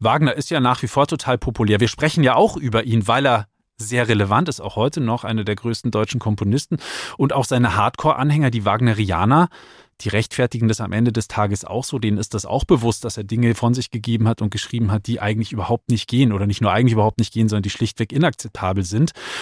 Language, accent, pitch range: German, German, 115-150 Hz